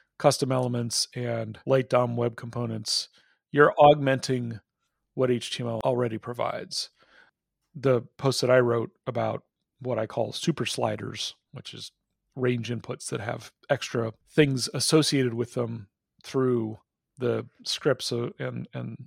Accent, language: American, English